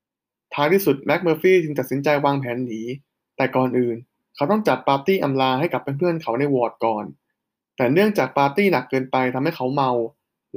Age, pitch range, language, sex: 20-39, 125-155 Hz, Thai, male